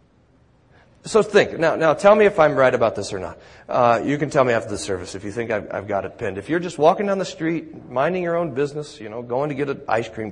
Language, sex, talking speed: English, male, 280 wpm